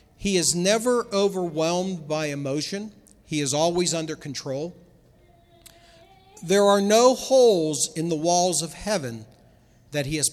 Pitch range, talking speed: 150-195 Hz, 135 wpm